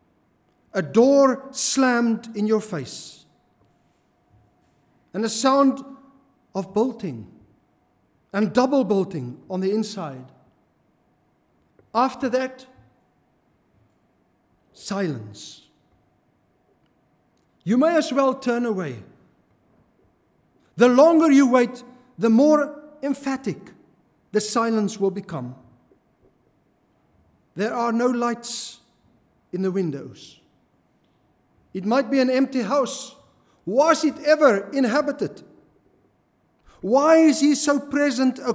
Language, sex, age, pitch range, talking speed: English, male, 50-69, 195-260 Hz, 95 wpm